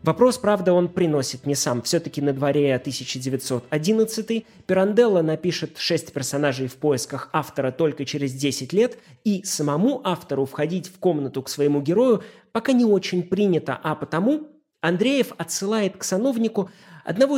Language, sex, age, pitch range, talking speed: Russian, male, 20-39, 135-205 Hz, 140 wpm